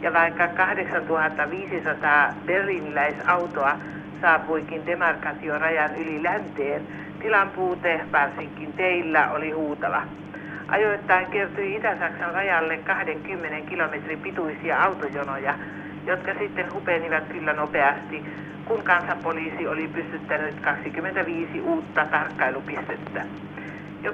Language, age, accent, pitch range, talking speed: Finnish, 60-79, native, 150-175 Hz, 85 wpm